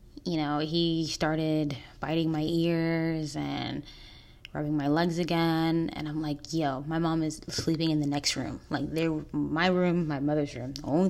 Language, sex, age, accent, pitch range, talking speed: English, female, 10-29, American, 120-165 Hz, 175 wpm